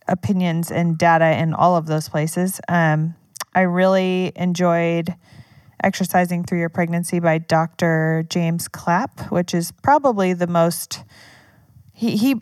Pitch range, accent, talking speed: 160-190 Hz, American, 130 wpm